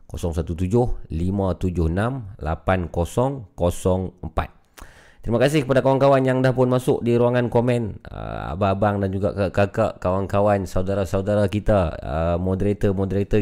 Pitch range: 90-115 Hz